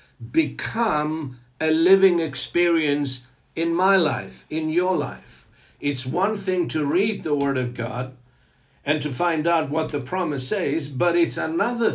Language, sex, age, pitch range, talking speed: English, male, 60-79, 130-180 Hz, 150 wpm